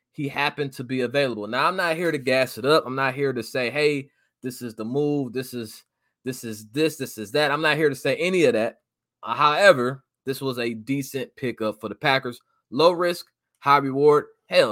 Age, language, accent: 20-39, English, American